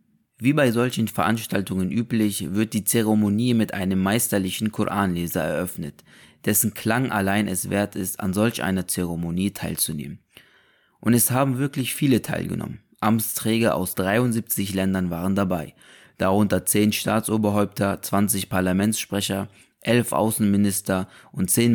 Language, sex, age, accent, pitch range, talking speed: German, male, 20-39, German, 95-110 Hz, 125 wpm